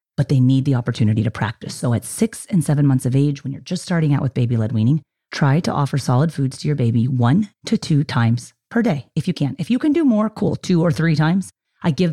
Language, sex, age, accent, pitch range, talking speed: English, female, 30-49, American, 130-180 Hz, 260 wpm